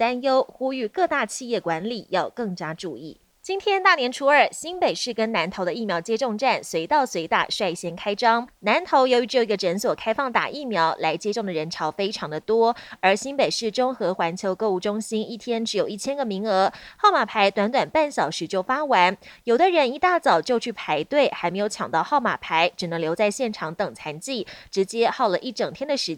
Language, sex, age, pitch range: Chinese, female, 20-39, 190-270 Hz